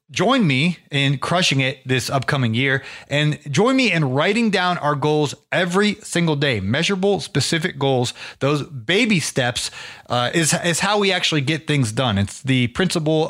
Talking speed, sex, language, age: 165 wpm, male, English, 30-49